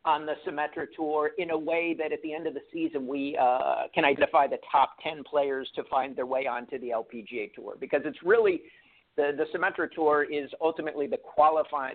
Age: 50-69